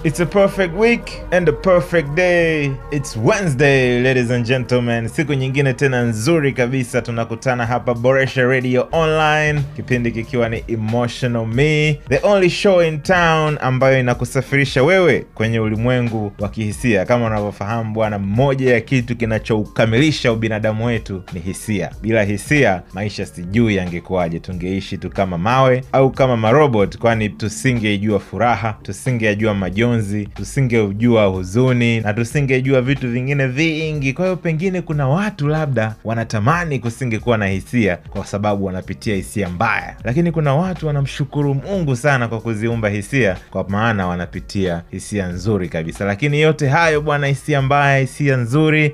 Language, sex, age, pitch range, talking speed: Swahili, male, 30-49, 105-140 Hz, 140 wpm